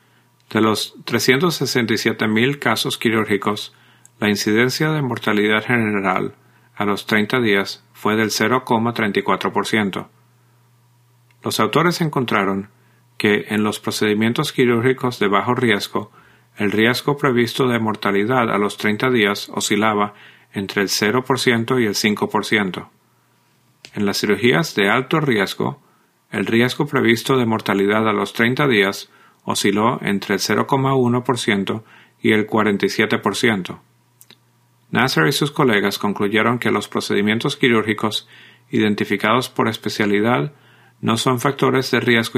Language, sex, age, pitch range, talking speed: English, male, 50-69, 105-125 Hz, 120 wpm